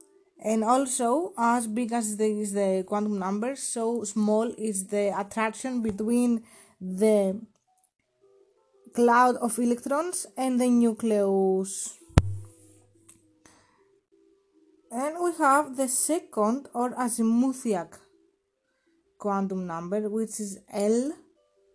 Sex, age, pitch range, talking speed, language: female, 20-39, 210-285 Hz, 95 wpm, English